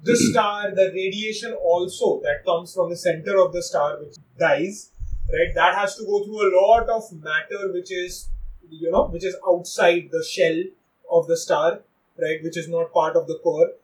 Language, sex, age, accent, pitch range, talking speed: English, male, 30-49, Indian, 175-210 Hz, 195 wpm